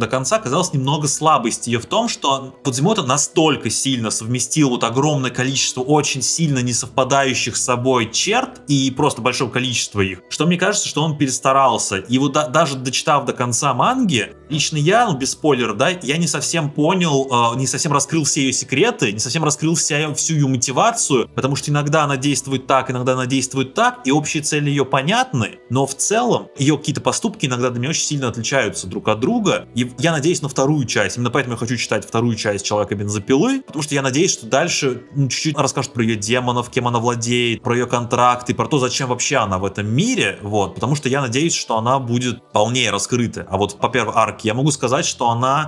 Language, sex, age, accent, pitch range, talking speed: Russian, male, 20-39, native, 115-145 Hz, 210 wpm